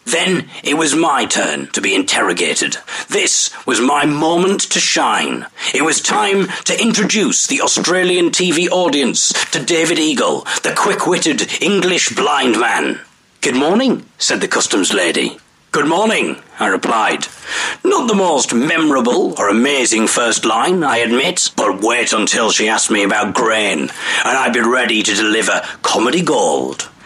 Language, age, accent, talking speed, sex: English, 40-59, British, 150 wpm, male